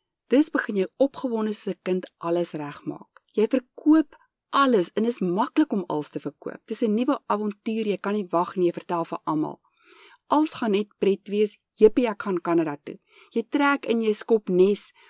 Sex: female